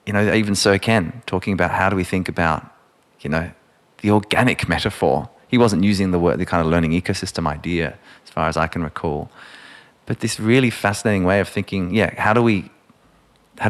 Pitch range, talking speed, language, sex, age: 85-105 Hz, 200 wpm, English, male, 20-39